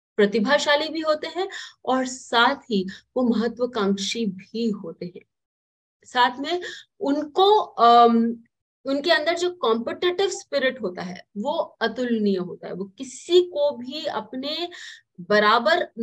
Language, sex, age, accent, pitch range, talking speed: English, female, 30-49, Indian, 210-290 Hz, 120 wpm